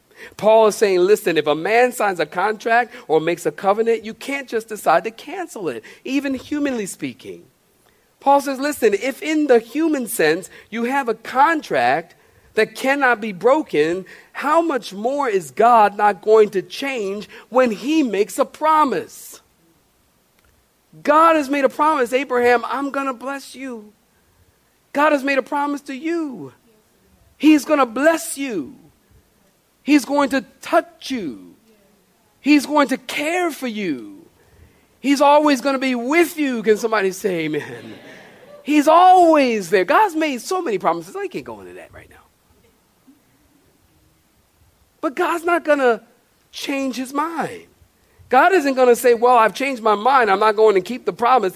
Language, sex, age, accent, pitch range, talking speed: English, male, 50-69, American, 220-295 Hz, 160 wpm